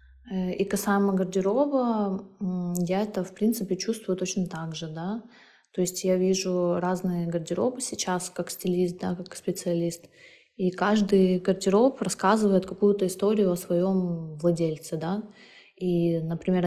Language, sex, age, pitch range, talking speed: Russian, female, 20-39, 170-190 Hz, 130 wpm